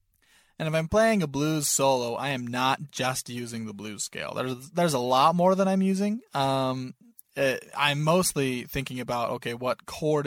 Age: 20-39